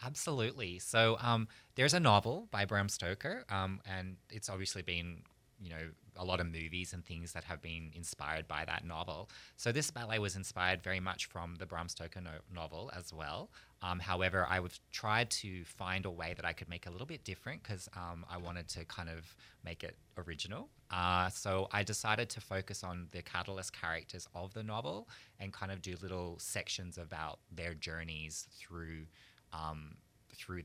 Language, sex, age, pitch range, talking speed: English, male, 20-39, 85-110 Hz, 185 wpm